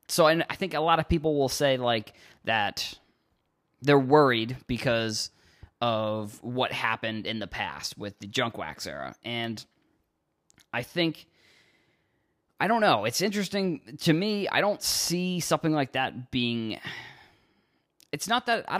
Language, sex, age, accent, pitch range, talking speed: English, male, 20-39, American, 115-155 Hz, 155 wpm